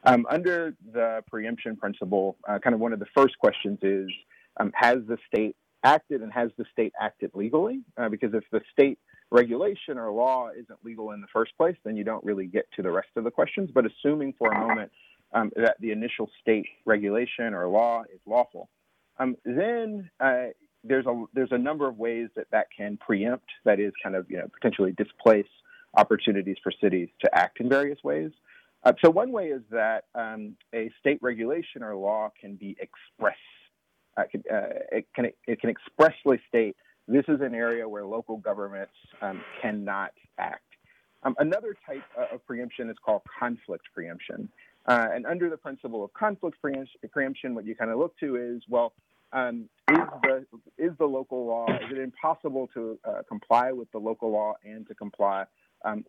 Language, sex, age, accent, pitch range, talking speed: English, male, 40-59, American, 110-135 Hz, 185 wpm